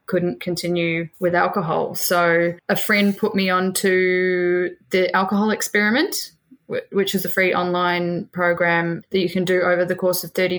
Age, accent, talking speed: 10-29, Australian, 165 wpm